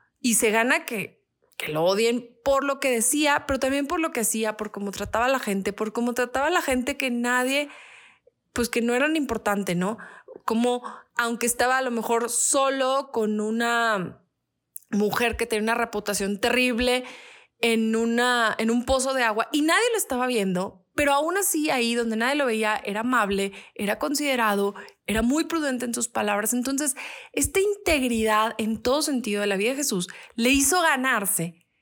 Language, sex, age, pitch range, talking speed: Spanish, female, 20-39, 210-275 Hz, 180 wpm